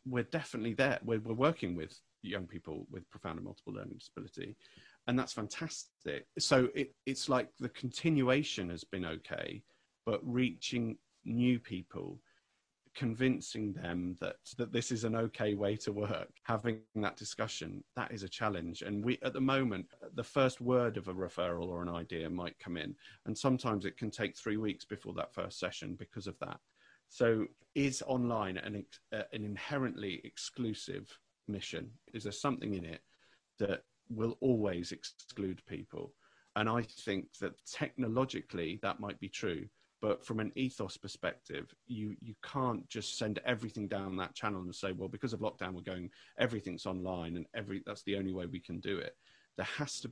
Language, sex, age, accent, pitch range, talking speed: English, male, 40-59, British, 95-125 Hz, 170 wpm